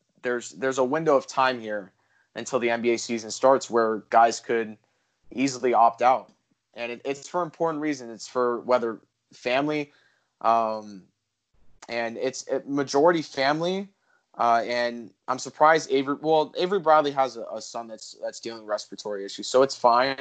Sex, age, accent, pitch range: male, 20-39, American, 115-130 Hz